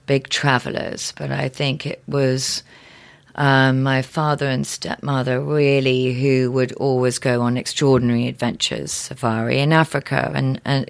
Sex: female